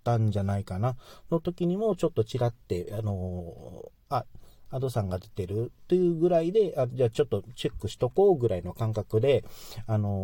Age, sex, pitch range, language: 40-59, male, 100-135 Hz, Japanese